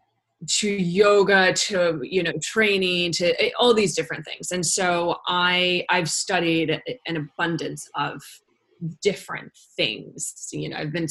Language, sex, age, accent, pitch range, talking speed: English, female, 20-39, American, 155-185 Hz, 135 wpm